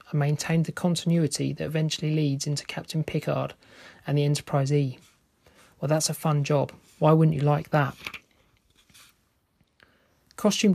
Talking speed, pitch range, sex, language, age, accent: 135 wpm, 145-160 Hz, male, English, 30-49, British